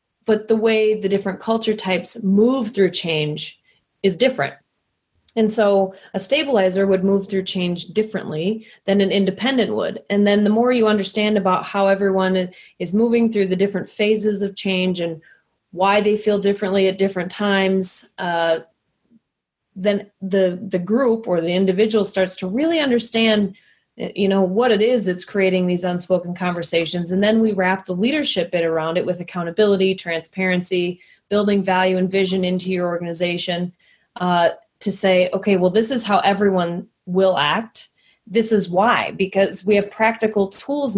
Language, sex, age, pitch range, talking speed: English, female, 20-39, 185-215 Hz, 160 wpm